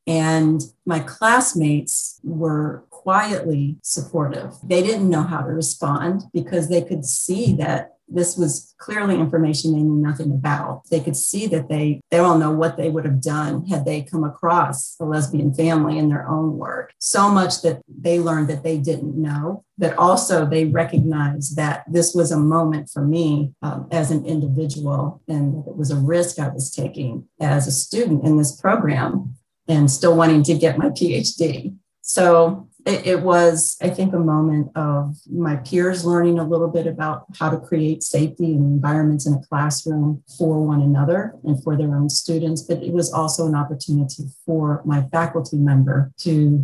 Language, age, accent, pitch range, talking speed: English, 40-59, American, 145-170 Hz, 180 wpm